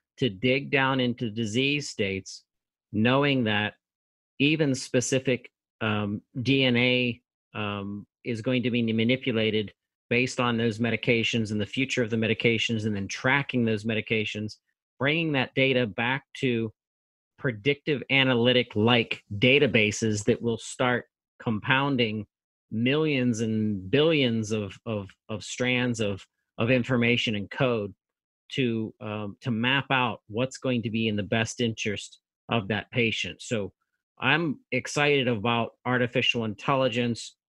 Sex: male